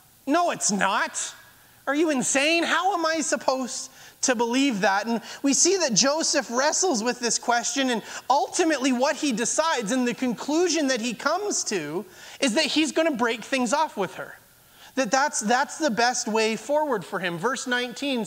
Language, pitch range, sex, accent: English, 235-300 Hz, male, American